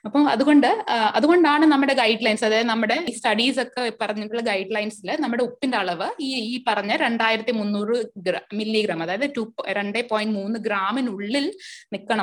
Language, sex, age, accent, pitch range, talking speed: English, female, 20-39, Indian, 210-275 Hz, 95 wpm